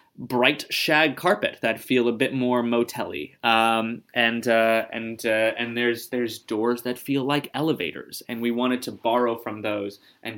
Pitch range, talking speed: 105-125 Hz, 180 wpm